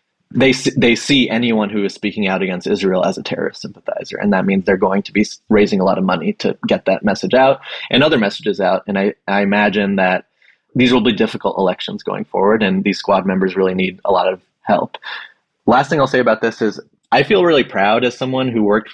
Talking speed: 230 wpm